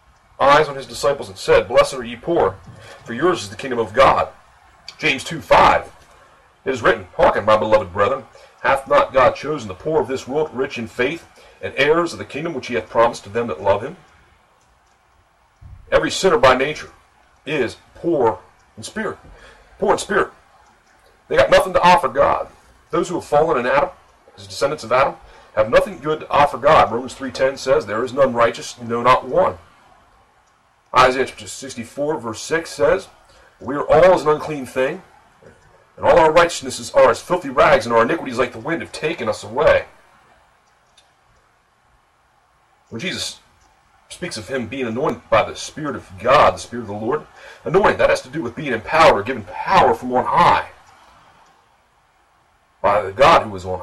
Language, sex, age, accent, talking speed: English, male, 40-59, American, 180 wpm